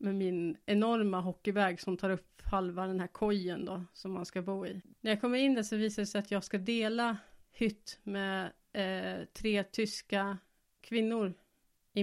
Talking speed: 185 wpm